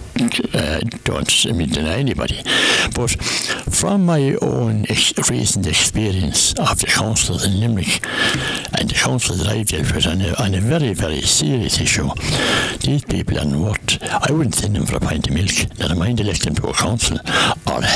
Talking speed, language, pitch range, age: 175 wpm, English, 95-125 Hz, 60-79